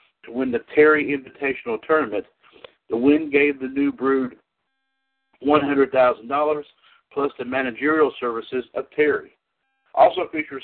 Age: 60-79